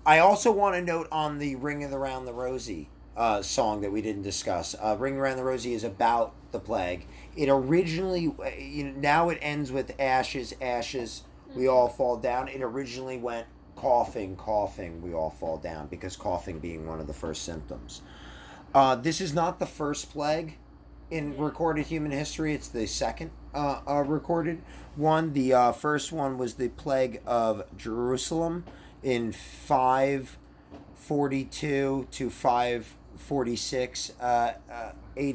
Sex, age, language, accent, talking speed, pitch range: male, 30-49, English, American, 150 wpm, 105-145 Hz